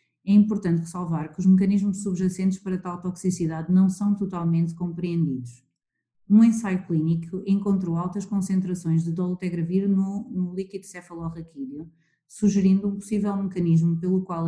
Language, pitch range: Portuguese, 165-195 Hz